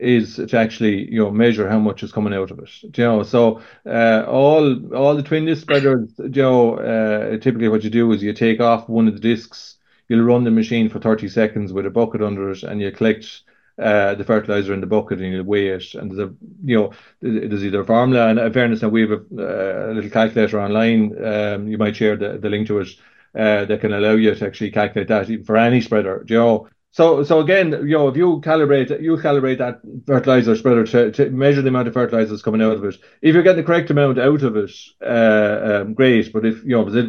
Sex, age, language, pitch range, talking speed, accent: male, 30-49, English, 105-130 Hz, 245 wpm, Irish